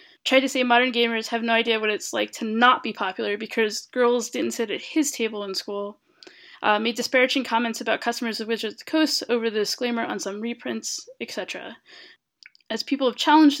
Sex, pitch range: female, 220-255 Hz